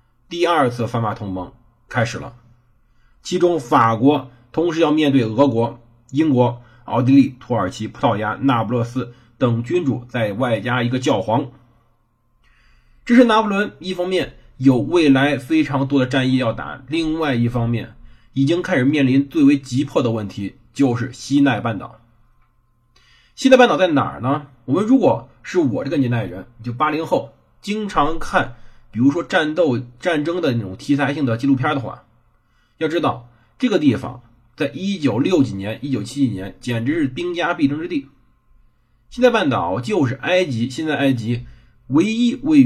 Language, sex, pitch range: Chinese, male, 115-165 Hz